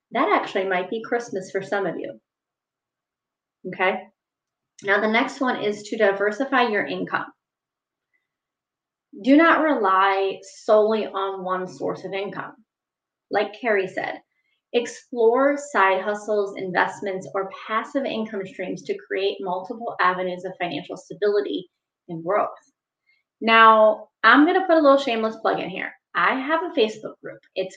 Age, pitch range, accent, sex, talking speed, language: 30-49, 195-260 Hz, American, female, 140 wpm, English